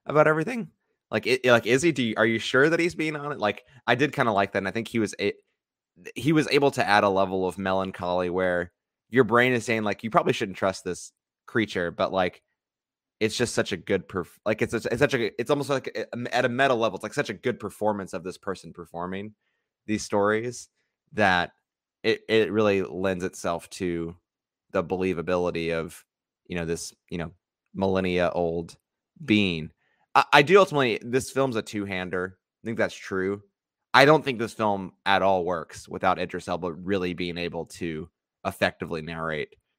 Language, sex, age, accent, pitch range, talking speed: English, male, 20-39, American, 90-115 Hz, 195 wpm